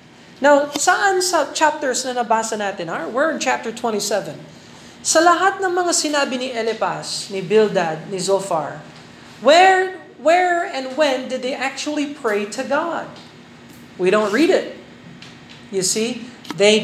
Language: Filipino